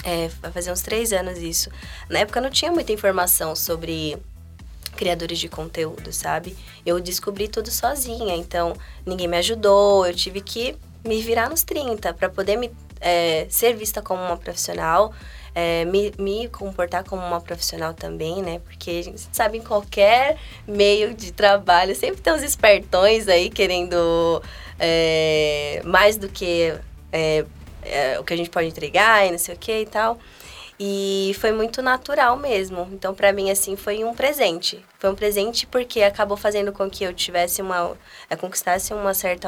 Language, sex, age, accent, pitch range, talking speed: Portuguese, female, 20-39, Brazilian, 170-205 Hz, 165 wpm